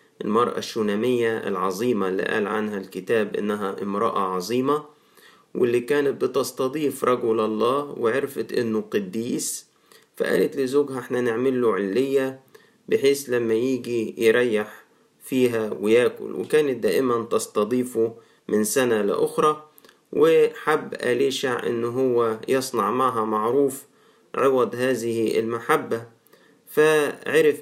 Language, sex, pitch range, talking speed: Arabic, male, 115-145 Hz, 100 wpm